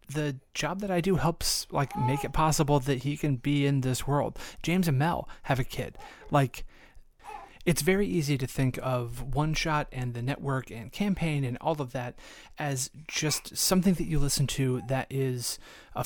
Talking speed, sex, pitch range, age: 190 wpm, male, 130-160 Hz, 30-49